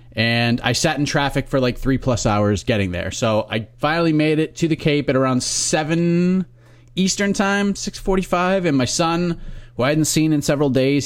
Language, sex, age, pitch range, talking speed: English, male, 30-49, 120-160 Hz, 195 wpm